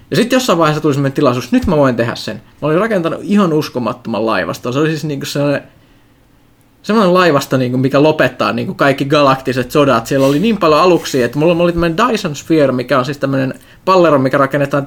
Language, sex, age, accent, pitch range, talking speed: Finnish, male, 20-39, native, 125-160 Hz, 190 wpm